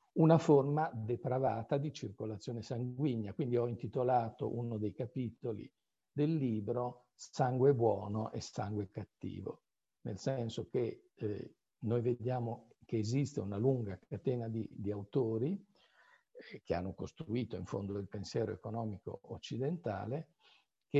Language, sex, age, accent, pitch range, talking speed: Italian, male, 50-69, native, 105-135 Hz, 125 wpm